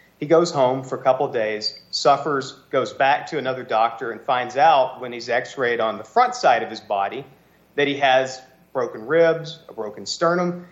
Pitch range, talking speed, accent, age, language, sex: 120-160 Hz, 190 wpm, American, 40-59, English, male